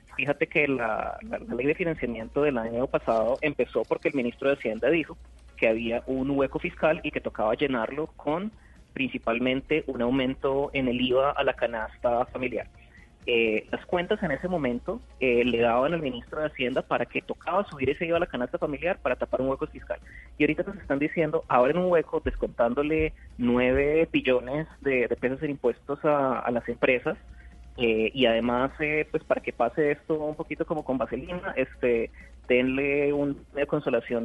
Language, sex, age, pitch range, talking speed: Spanish, male, 30-49, 125-160 Hz, 180 wpm